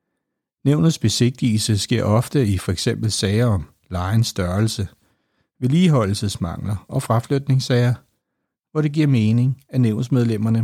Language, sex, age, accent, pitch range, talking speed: Danish, male, 60-79, native, 110-140 Hz, 105 wpm